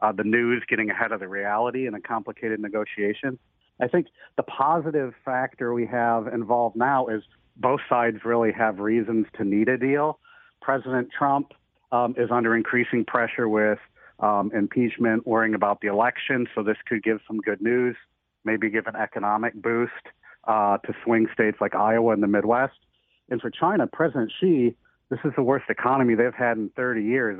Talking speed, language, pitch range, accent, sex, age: 175 wpm, English, 110-125 Hz, American, male, 40-59